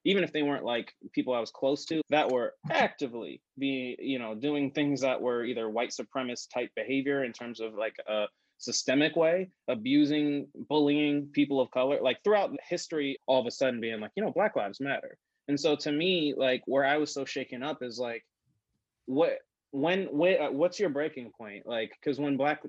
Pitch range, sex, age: 130-175 Hz, male, 20-39